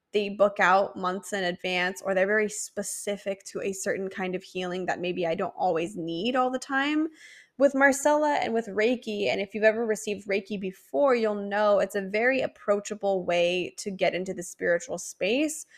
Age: 10-29